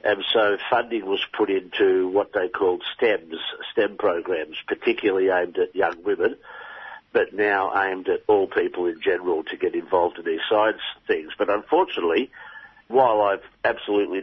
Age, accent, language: 50-69, Australian, English